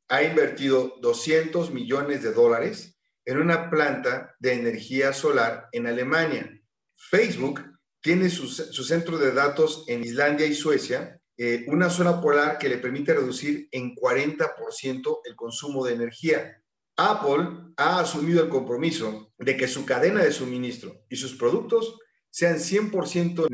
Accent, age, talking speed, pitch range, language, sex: Mexican, 40-59, 140 wpm, 130-175 Hz, Spanish, male